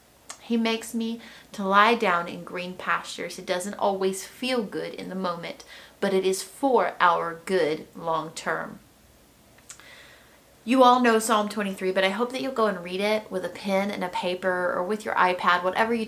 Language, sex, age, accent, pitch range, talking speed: English, female, 30-49, American, 185-225 Hz, 190 wpm